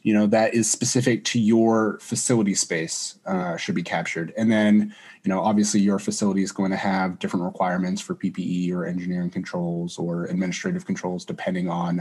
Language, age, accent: English, 30-49, American